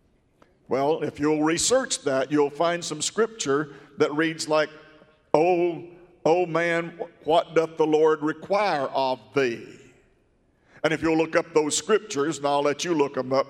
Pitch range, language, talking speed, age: 145-175 Hz, English, 160 wpm, 50-69